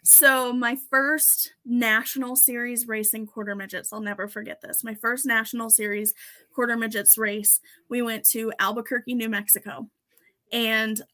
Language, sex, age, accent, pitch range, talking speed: English, female, 20-39, American, 215-250 Hz, 140 wpm